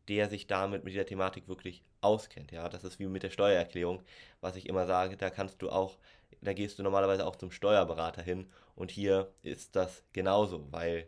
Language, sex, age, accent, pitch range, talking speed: German, male, 20-39, German, 90-105 Hz, 200 wpm